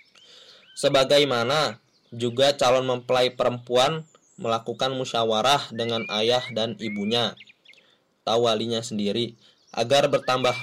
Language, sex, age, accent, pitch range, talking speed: Indonesian, male, 20-39, native, 115-140 Hz, 85 wpm